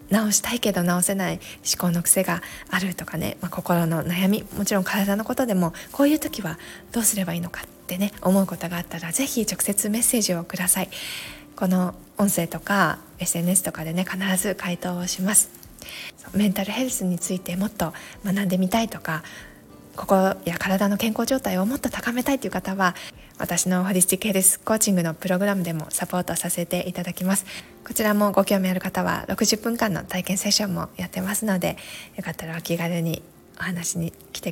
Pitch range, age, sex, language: 175-200 Hz, 20-39, female, Japanese